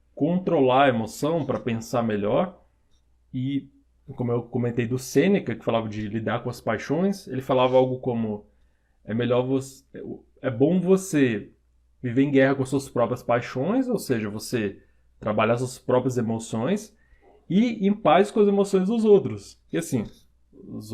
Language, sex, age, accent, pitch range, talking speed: Portuguese, male, 20-39, Brazilian, 110-140 Hz, 160 wpm